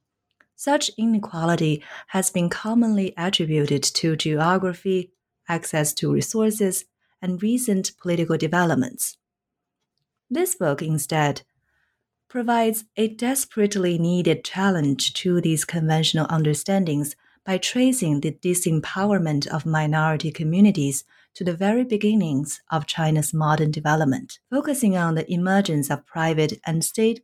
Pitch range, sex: 155-205 Hz, female